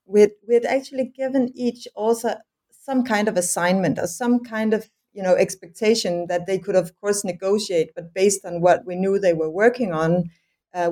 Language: English